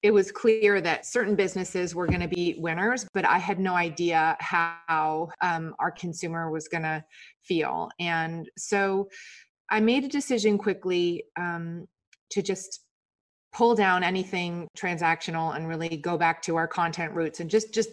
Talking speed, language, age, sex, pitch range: 165 wpm, English, 30-49, female, 170-210 Hz